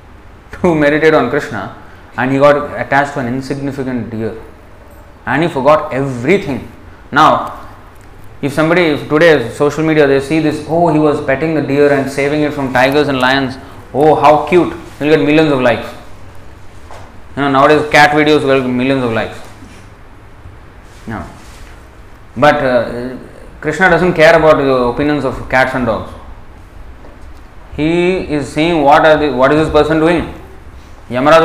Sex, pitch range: male, 110-150 Hz